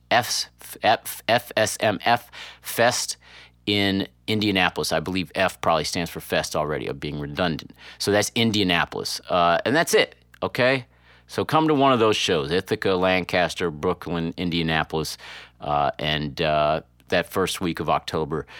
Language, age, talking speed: English, 40-59, 140 wpm